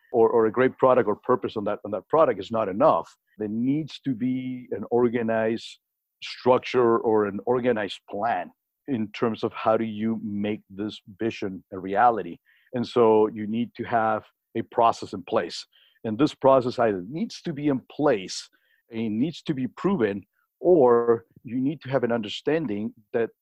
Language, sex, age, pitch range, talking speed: English, male, 50-69, 105-125 Hz, 175 wpm